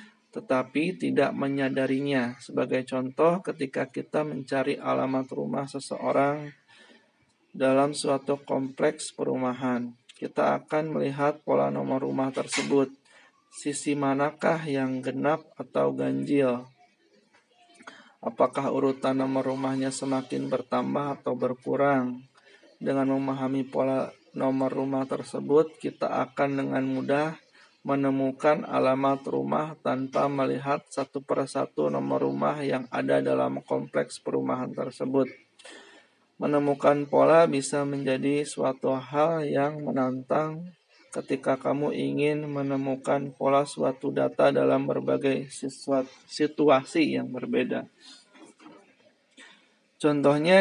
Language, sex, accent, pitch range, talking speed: Indonesian, male, native, 125-145 Hz, 95 wpm